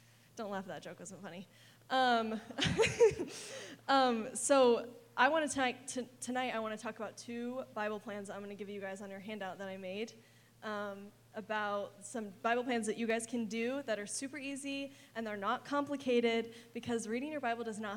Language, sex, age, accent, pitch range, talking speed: English, female, 10-29, American, 205-245 Hz, 190 wpm